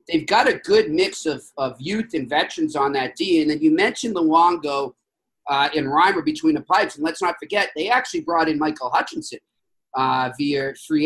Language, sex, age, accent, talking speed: English, male, 40-59, American, 200 wpm